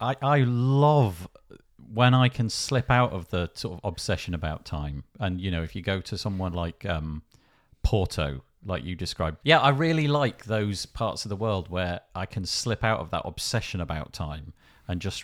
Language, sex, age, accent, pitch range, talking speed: English, male, 40-59, British, 95-145 Hz, 195 wpm